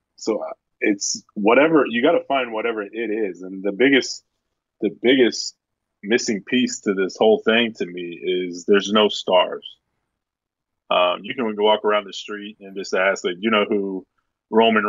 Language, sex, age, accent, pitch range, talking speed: English, male, 20-39, American, 100-110 Hz, 170 wpm